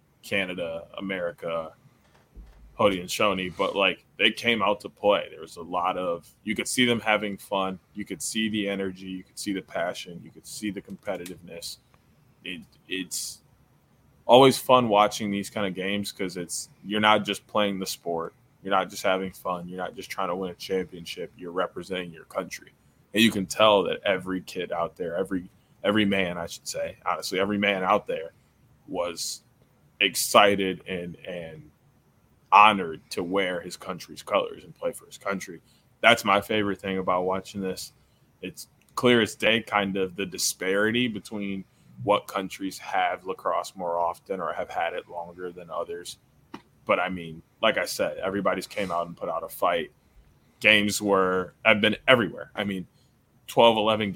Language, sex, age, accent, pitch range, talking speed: English, male, 20-39, American, 90-105 Hz, 180 wpm